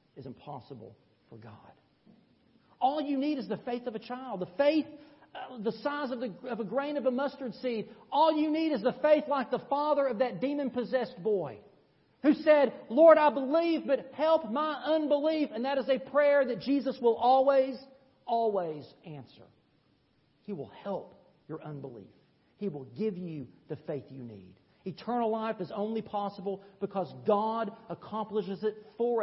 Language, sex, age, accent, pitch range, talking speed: English, male, 50-69, American, 185-270 Hz, 170 wpm